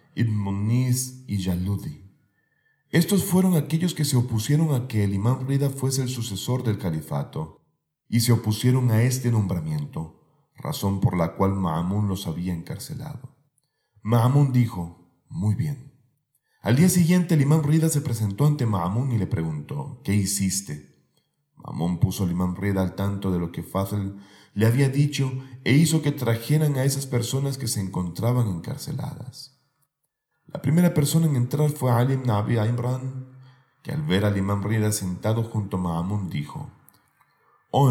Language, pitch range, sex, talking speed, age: Spanish, 95-140 Hz, male, 155 wpm, 40-59